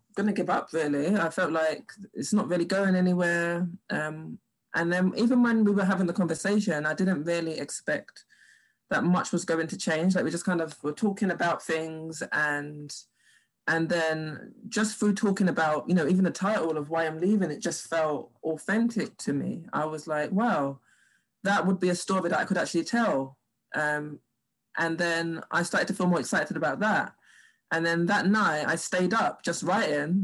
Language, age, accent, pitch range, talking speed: English, 20-39, British, 160-200 Hz, 195 wpm